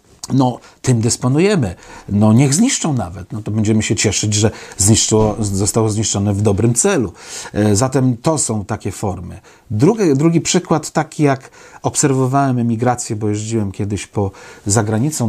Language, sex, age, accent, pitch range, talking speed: Polish, male, 40-59, native, 110-135 Hz, 135 wpm